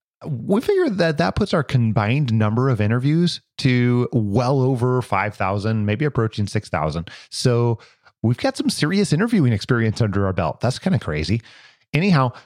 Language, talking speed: English, 155 wpm